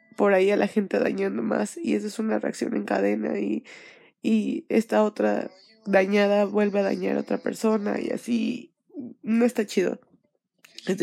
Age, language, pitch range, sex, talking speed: 20-39, Spanish, 185-235 Hz, female, 170 wpm